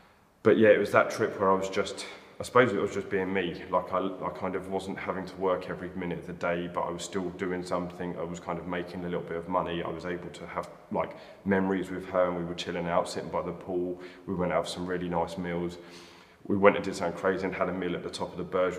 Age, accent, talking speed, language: 20-39, British, 285 wpm, English